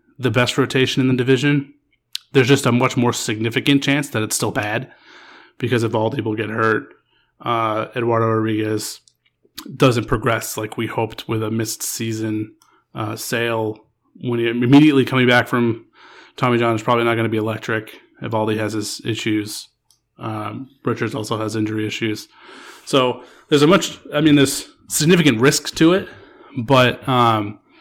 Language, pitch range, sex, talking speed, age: English, 110-130 Hz, male, 160 wpm, 30-49